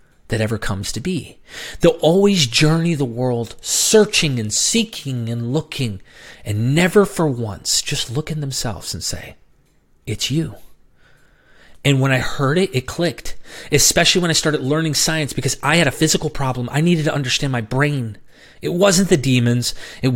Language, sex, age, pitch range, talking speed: English, male, 30-49, 115-155 Hz, 170 wpm